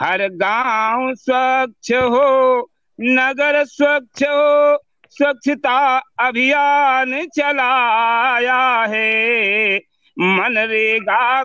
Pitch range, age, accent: 220-275 Hz, 50-69, native